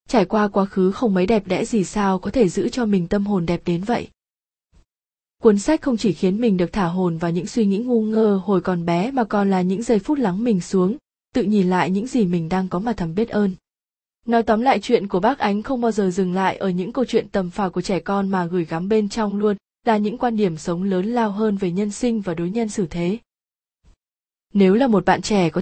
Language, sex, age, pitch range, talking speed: Vietnamese, female, 20-39, 185-225 Hz, 255 wpm